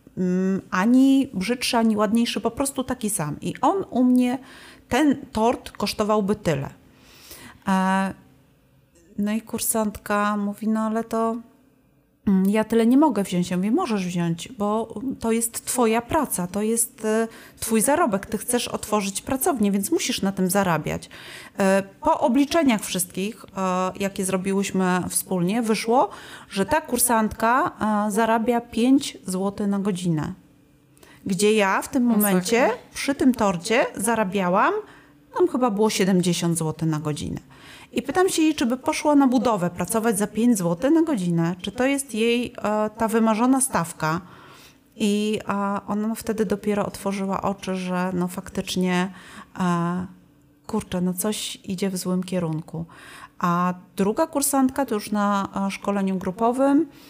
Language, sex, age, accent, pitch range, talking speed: Polish, female, 30-49, native, 185-235 Hz, 135 wpm